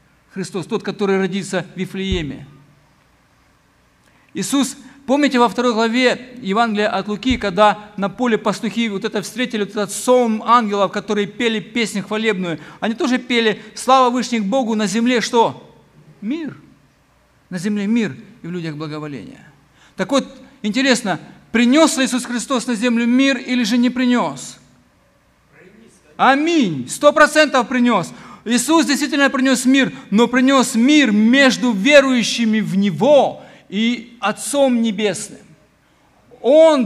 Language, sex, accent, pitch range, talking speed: Ukrainian, male, native, 210-265 Hz, 125 wpm